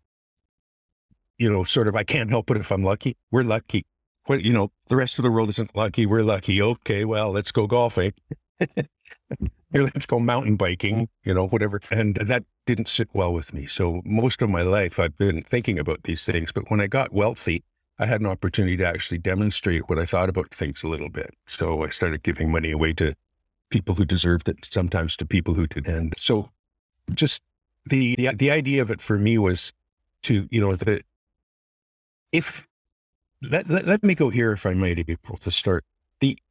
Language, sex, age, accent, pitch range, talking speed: English, male, 50-69, American, 85-110 Hz, 205 wpm